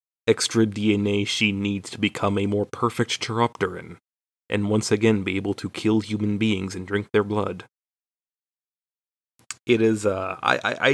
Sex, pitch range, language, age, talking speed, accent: male, 100-115 Hz, English, 30-49, 155 wpm, American